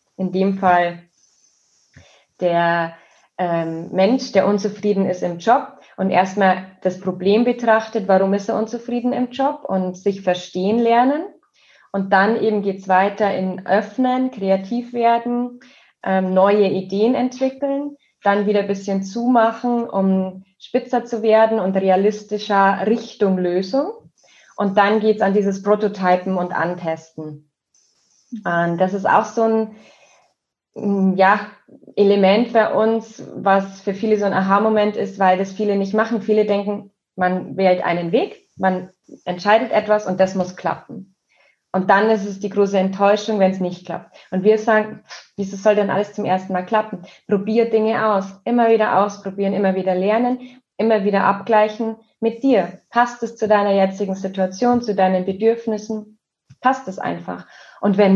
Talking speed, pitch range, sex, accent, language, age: 150 wpm, 190-225 Hz, female, German, German, 20-39